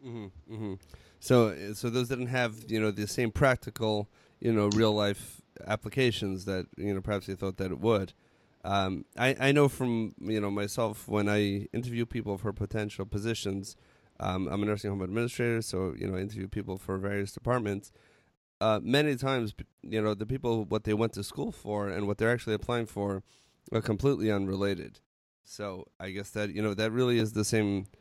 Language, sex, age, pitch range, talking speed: English, male, 30-49, 100-120 Hz, 190 wpm